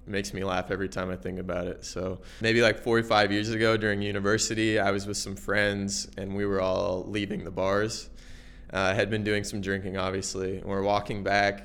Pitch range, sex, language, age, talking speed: 100-120 Hz, male, English, 20-39, 215 wpm